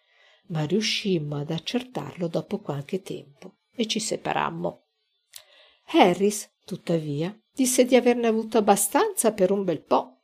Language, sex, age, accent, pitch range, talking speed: Italian, female, 50-69, native, 180-245 Hz, 125 wpm